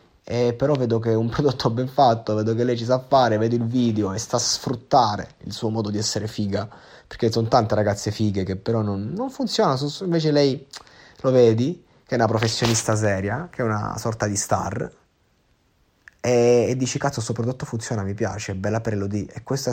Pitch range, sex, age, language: 105-125 Hz, male, 20-39, Italian